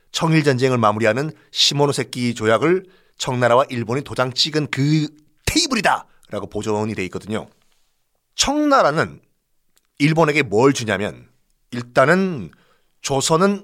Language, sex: Korean, male